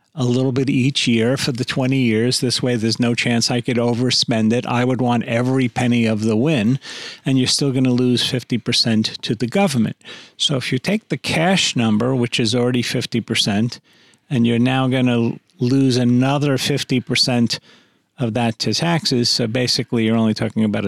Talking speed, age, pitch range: 180 wpm, 40-59, 115-130 Hz